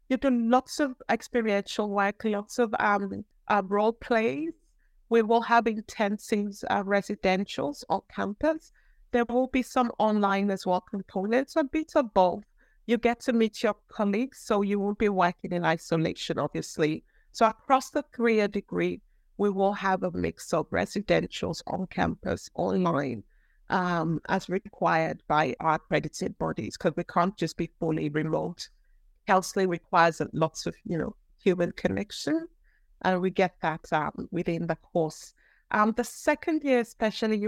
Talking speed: 155 wpm